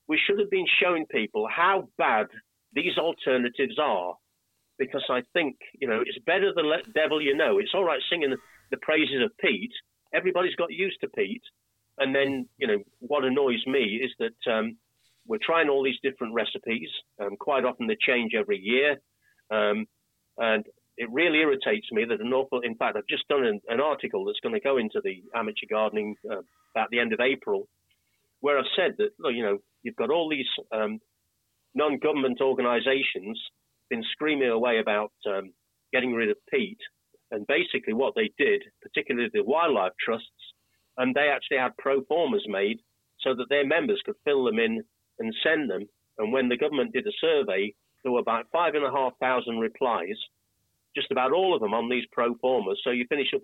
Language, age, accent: English, 40-59, British